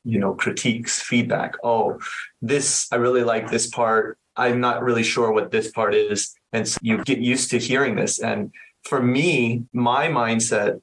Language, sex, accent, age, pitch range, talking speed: English, male, American, 30-49, 110-130 Hz, 175 wpm